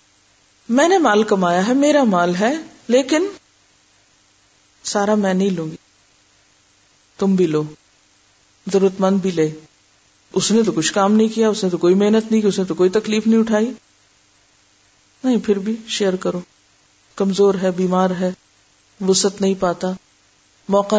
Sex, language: female, Urdu